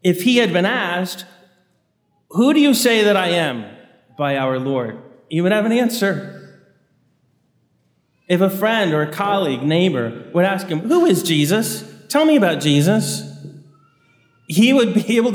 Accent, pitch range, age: American, 140-200 Hz, 30-49